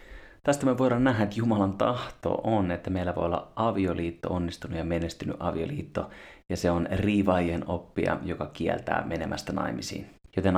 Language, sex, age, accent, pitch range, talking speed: Finnish, male, 30-49, native, 90-115 Hz, 155 wpm